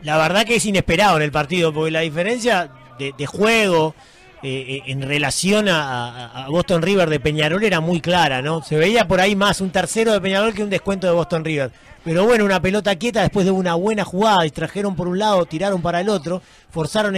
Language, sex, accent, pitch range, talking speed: Spanish, male, Argentinian, 155-205 Hz, 220 wpm